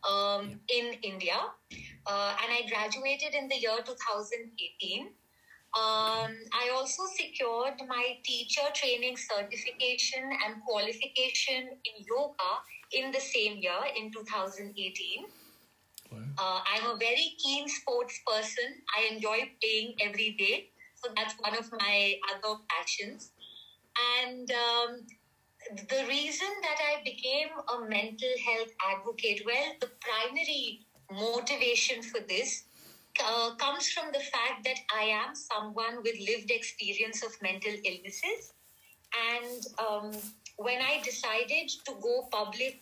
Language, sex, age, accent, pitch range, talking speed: English, female, 20-39, Indian, 215-265 Hz, 125 wpm